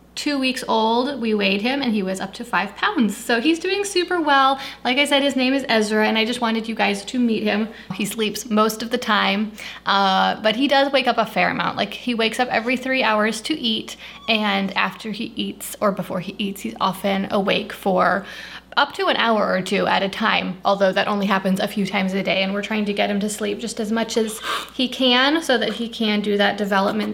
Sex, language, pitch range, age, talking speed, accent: female, English, 210-250 Hz, 20-39, 240 wpm, American